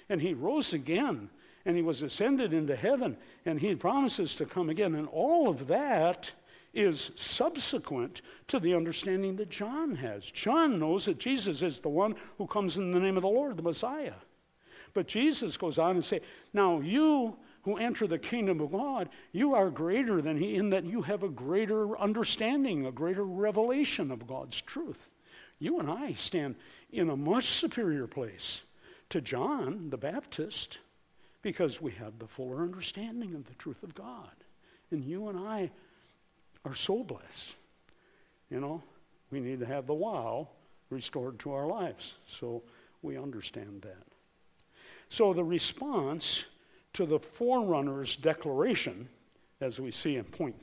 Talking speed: 160 wpm